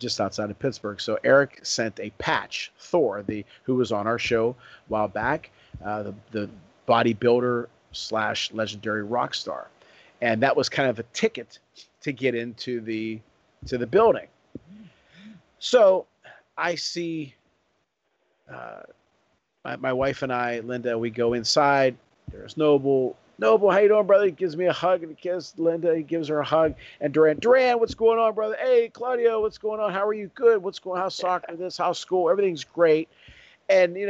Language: English